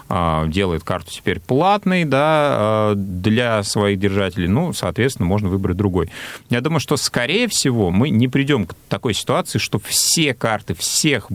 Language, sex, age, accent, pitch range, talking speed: Russian, male, 30-49, native, 95-130 Hz, 150 wpm